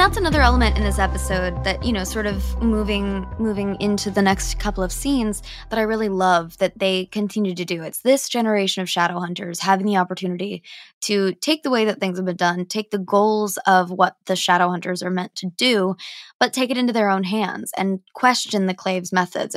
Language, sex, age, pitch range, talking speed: English, female, 20-39, 180-210 Hz, 215 wpm